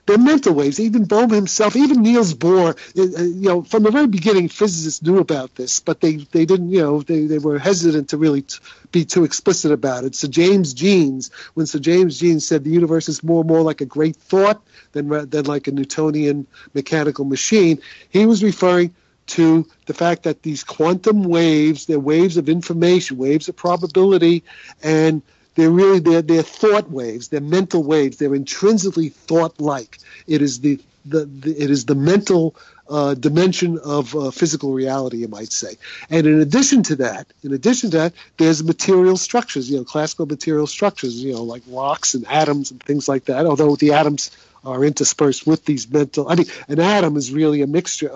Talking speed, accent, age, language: 190 wpm, American, 50-69, English